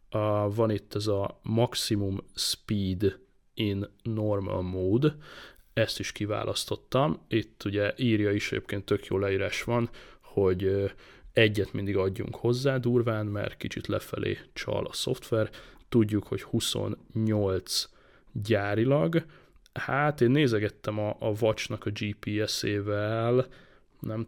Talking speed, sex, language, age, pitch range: 115 wpm, male, Hungarian, 20-39, 100-115 Hz